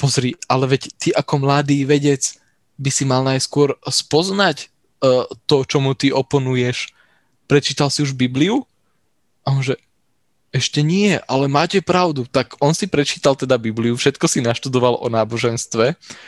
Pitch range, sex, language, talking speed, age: 125-150 Hz, male, English, 135 wpm, 20-39